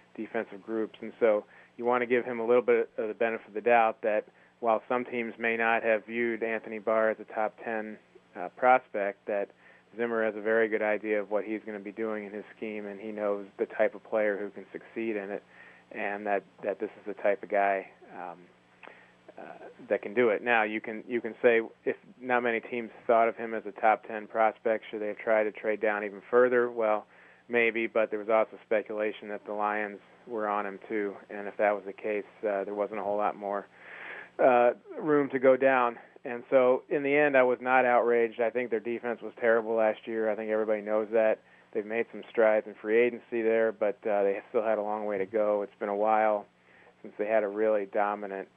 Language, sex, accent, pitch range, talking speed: English, male, American, 100-115 Hz, 230 wpm